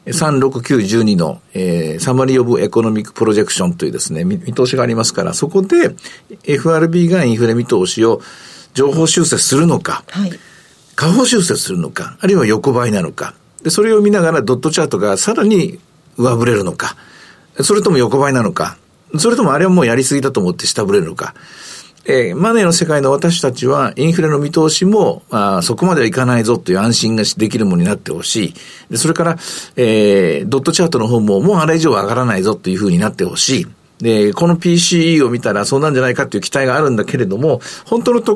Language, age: Japanese, 50-69